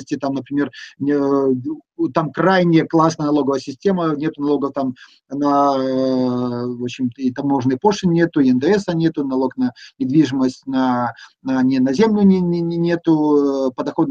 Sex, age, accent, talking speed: male, 30-49, native, 140 wpm